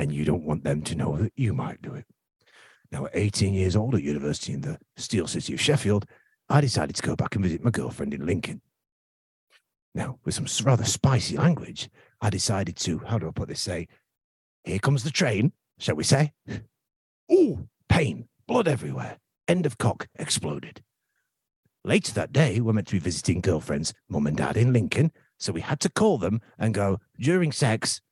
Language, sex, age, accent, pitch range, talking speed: English, male, 50-69, British, 105-150 Hz, 190 wpm